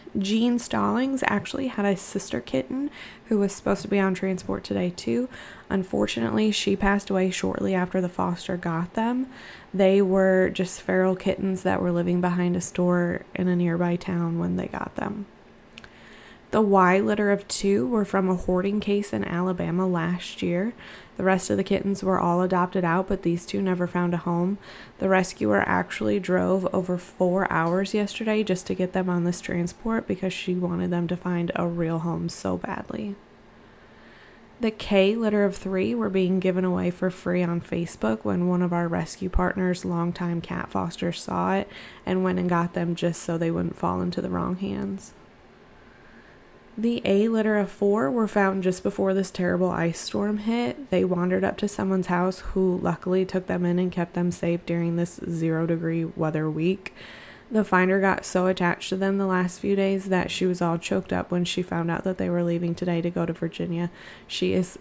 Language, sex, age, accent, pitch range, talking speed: English, female, 20-39, American, 175-195 Hz, 190 wpm